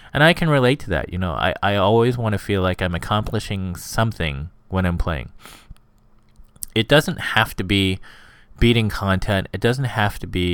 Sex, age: male, 20-39